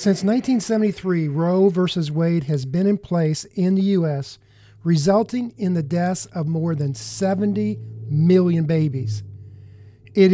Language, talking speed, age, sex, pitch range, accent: English, 135 wpm, 50-69, male, 145-190 Hz, American